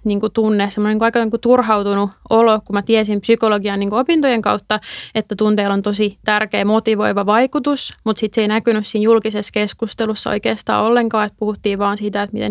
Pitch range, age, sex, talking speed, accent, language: 205-225 Hz, 20-39, female, 190 wpm, native, Finnish